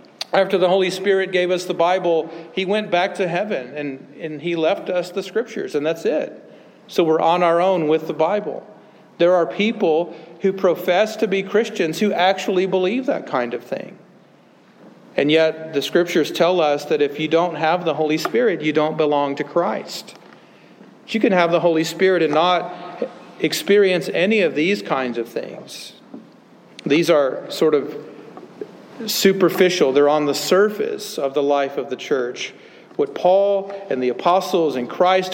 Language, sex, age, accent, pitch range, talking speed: English, male, 50-69, American, 145-190 Hz, 175 wpm